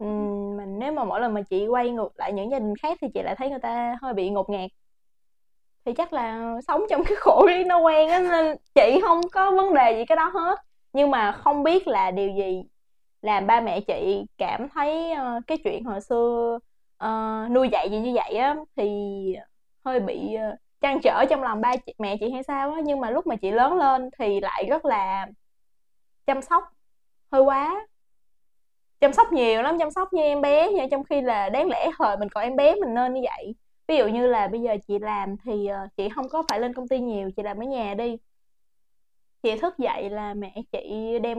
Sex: female